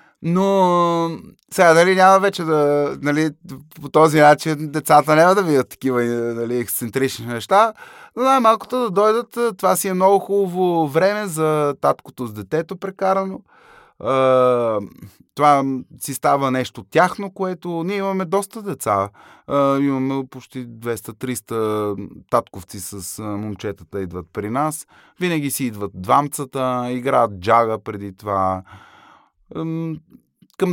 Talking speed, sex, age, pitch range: 120 wpm, male, 20-39, 125-185 Hz